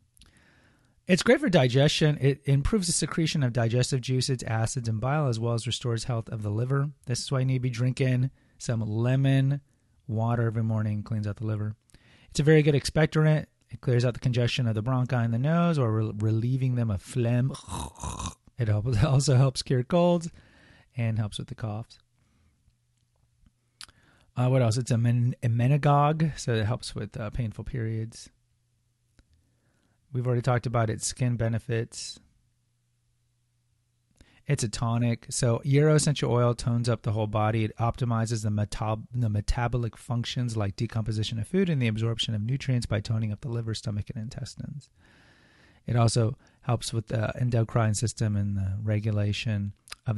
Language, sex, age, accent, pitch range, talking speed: English, male, 30-49, American, 110-130 Hz, 165 wpm